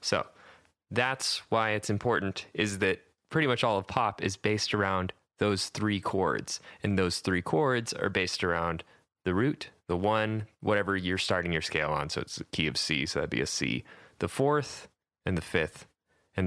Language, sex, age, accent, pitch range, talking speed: English, male, 20-39, American, 90-115 Hz, 190 wpm